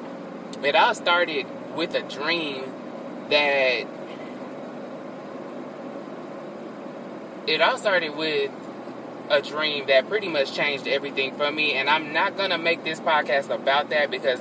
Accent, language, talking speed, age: American, English, 130 wpm, 20-39